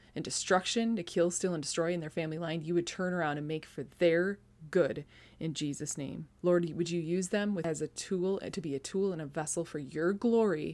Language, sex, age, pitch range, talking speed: English, female, 20-39, 150-175 Hz, 230 wpm